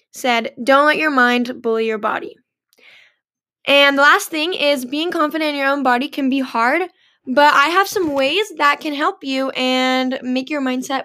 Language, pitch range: English, 255-315 Hz